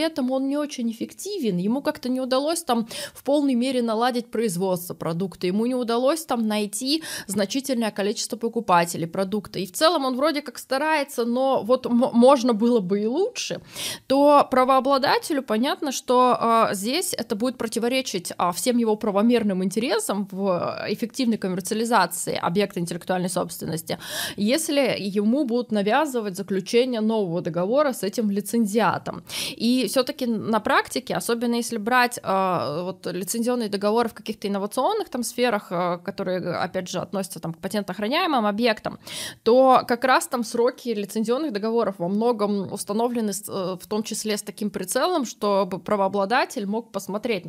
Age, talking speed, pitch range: 20-39, 140 wpm, 195-250 Hz